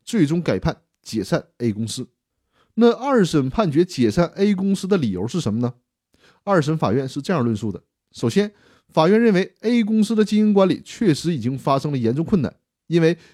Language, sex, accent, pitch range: Chinese, male, native, 125-195 Hz